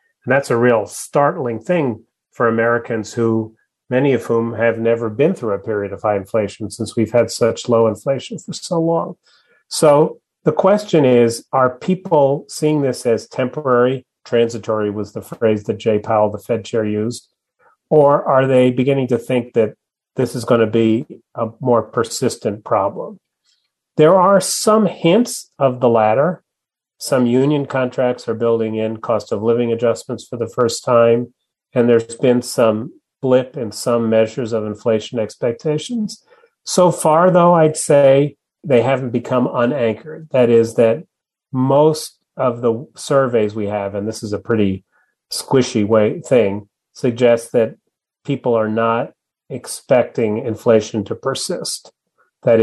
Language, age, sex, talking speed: English, 40-59, male, 155 wpm